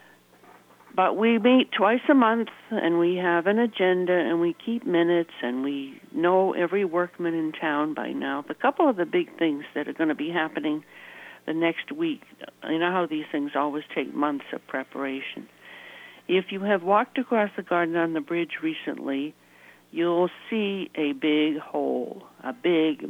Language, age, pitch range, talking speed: English, 60-79, 150-195 Hz, 175 wpm